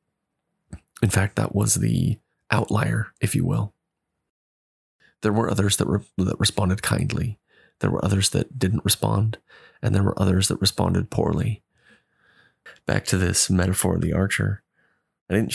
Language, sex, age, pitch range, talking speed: English, male, 30-49, 85-105 Hz, 145 wpm